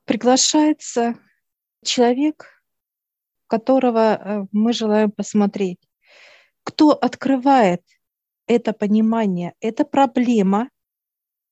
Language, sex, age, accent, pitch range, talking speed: Russian, female, 40-59, native, 205-250 Hz, 65 wpm